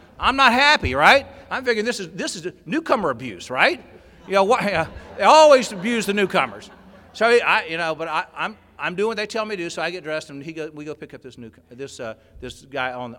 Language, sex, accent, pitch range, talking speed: English, male, American, 110-170 Hz, 255 wpm